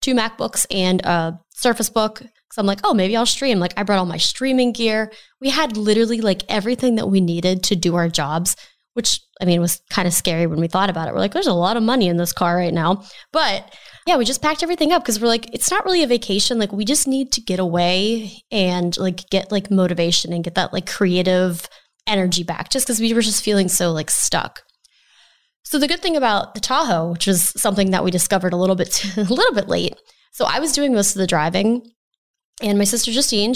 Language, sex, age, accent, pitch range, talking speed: English, female, 20-39, American, 185-240 Hz, 235 wpm